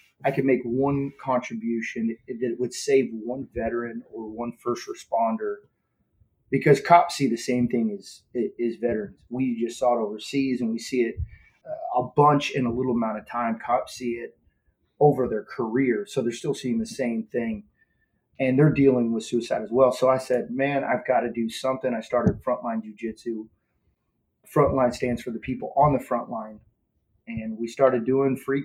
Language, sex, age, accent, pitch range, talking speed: English, male, 30-49, American, 115-130 Hz, 185 wpm